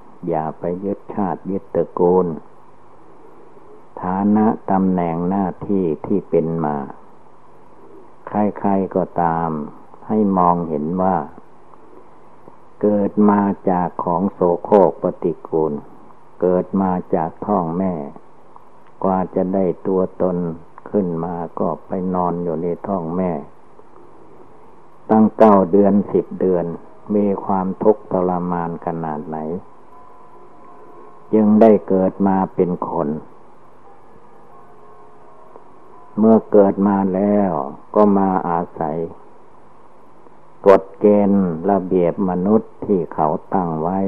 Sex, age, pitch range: male, 60-79, 85-100 Hz